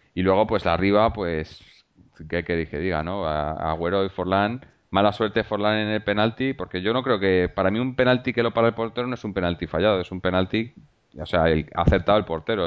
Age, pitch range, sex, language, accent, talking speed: 30-49, 85-100 Hz, male, Spanish, Spanish, 230 wpm